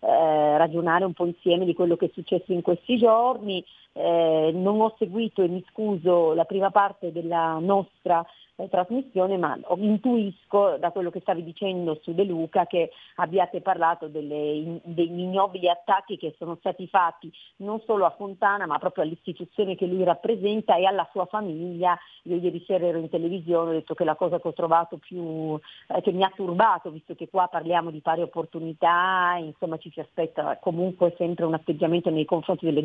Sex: female